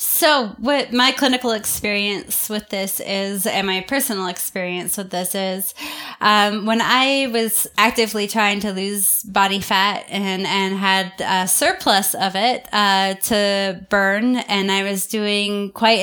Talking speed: 150 wpm